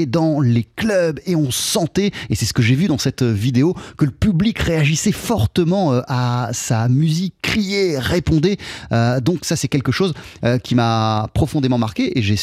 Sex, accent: male, French